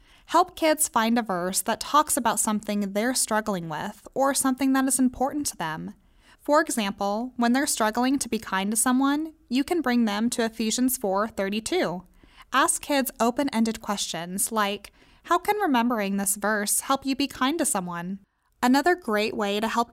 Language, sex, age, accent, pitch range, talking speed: English, female, 20-39, American, 205-260 Hz, 170 wpm